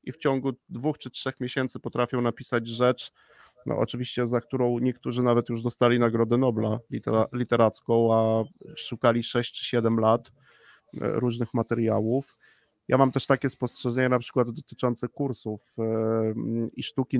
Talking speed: 140 wpm